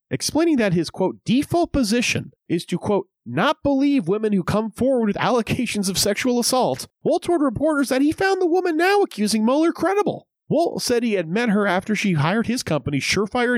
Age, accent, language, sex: 30-49, American, English, male